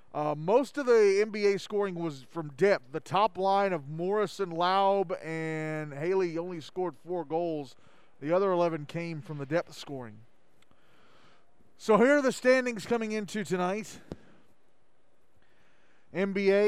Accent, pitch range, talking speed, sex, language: American, 160-190 Hz, 135 wpm, male, English